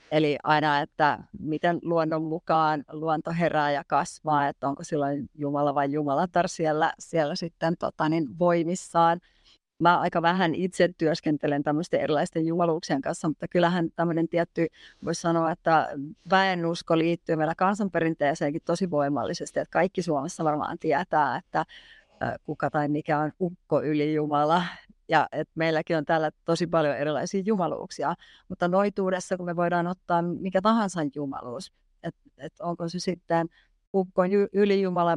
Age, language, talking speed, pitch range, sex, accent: 30-49, Finnish, 135 wpm, 155-180 Hz, female, native